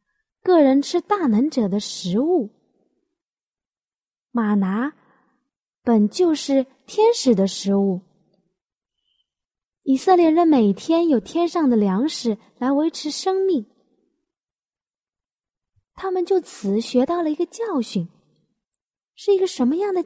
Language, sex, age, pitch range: Chinese, female, 20-39, 225-335 Hz